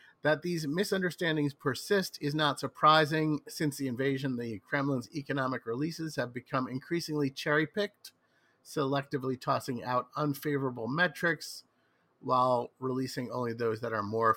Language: English